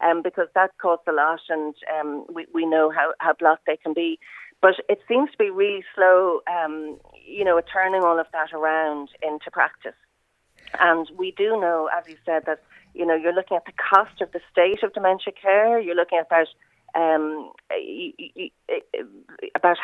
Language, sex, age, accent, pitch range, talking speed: English, female, 40-59, Irish, 155-190 Hz, 185 wpm